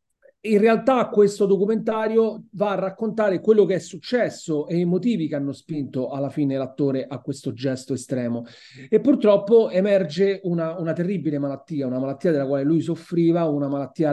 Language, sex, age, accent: Italian, male, 40-59, native